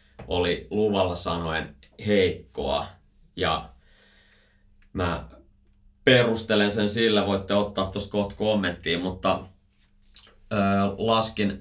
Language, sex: Finnish, male